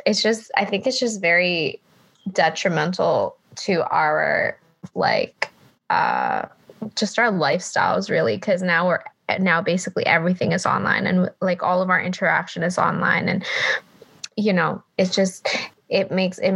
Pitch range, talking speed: 180-220 Hz, 145 wpm